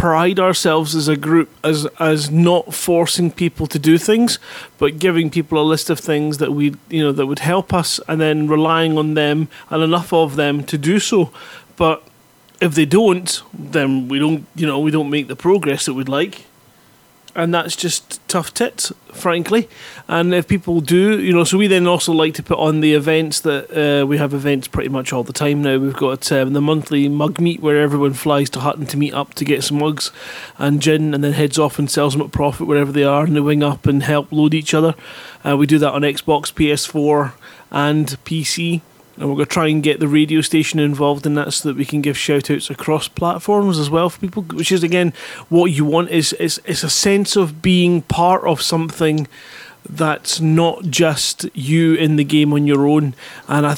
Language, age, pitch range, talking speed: English, 30-49, 145-165 Hz, 215 wpm